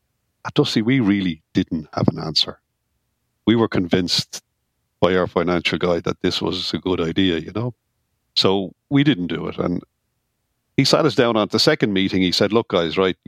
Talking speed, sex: 190 wpm, male